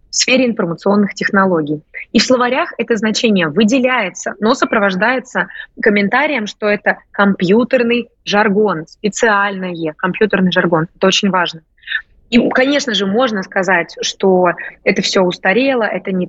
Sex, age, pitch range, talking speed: female, 20-39, 185-225 Hz, 125 wpm